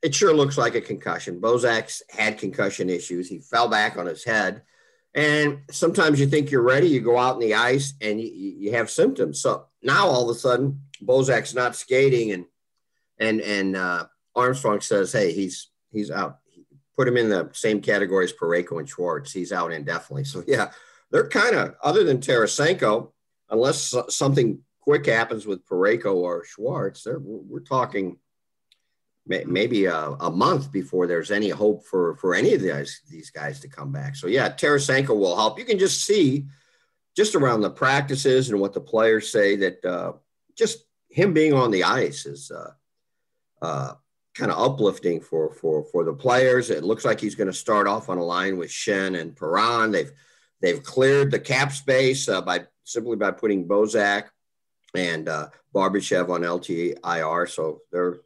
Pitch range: 110-160 Hz